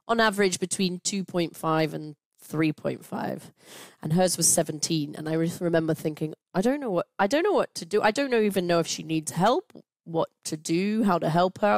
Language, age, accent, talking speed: English, 30-49, British, 215 wpm